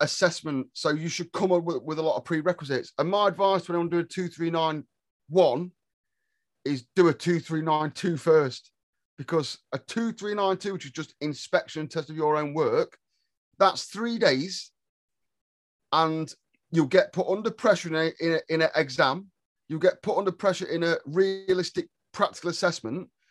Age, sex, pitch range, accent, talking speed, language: 30-49, male, 160-190 Hz, British, 160 wpm, English